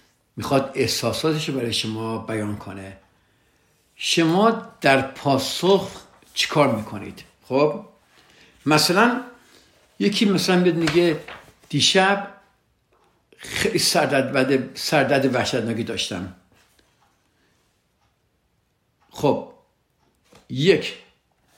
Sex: male